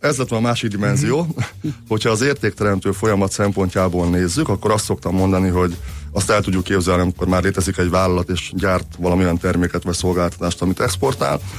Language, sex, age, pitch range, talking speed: Hungarian, male, 30-49, 90-110 Hz, 170 wpm